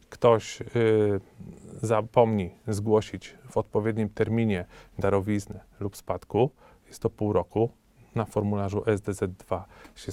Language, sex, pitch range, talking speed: Polish, male, 100-115 Hz, 100 wpm